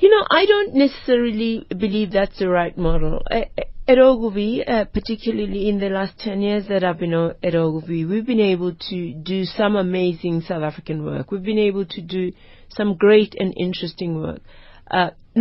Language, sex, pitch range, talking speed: English, female, 180-220 Hz, 170 wpm